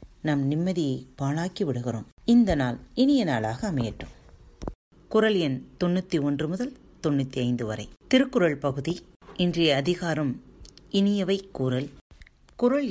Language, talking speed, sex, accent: Tamil, 100 wpm, female, native